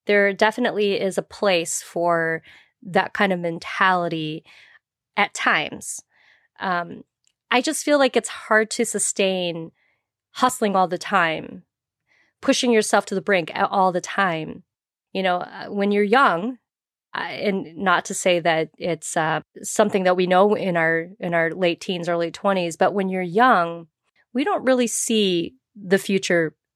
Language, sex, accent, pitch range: English, female, American, 175-225 Hz